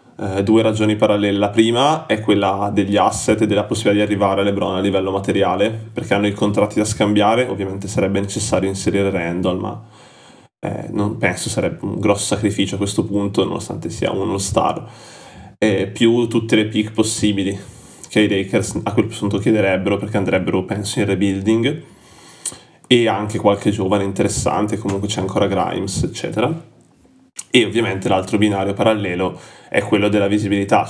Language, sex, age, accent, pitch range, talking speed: Italian, male, 20-39, native, 100-110 Hz, 160 wpm